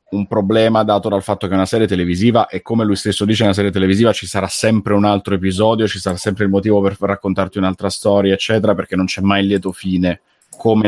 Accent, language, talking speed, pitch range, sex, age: native, Italian, 235 wpm, 95-110 Hz, male, 30-49